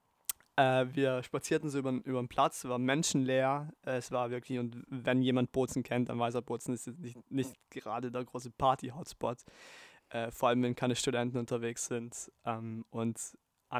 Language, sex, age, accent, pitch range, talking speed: German, male, 20-39, German, 120-135 Hz, 180 wpm